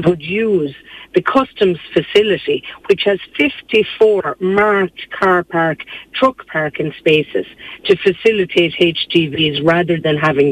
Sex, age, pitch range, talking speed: female, 50-69, 155-200 Hz, 115 wpm